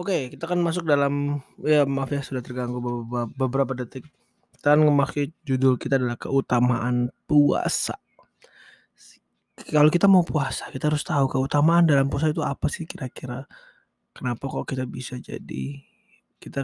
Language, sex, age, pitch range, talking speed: English, male, 20-39, 135-175 Hz, 150 wpm